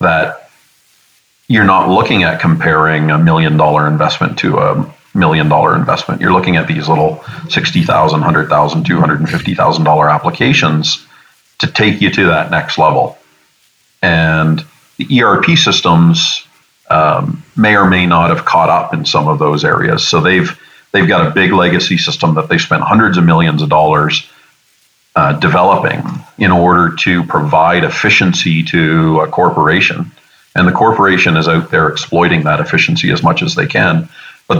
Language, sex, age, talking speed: English, male, 40-59, 155 wpm